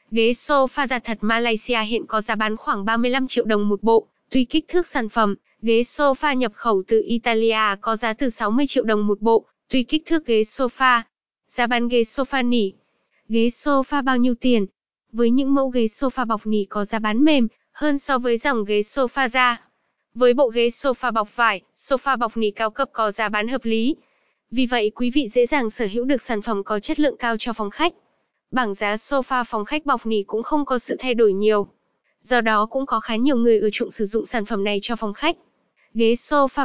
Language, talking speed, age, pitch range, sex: Vietnamese, 220 wpm, 20-39, 220-265 Hz, female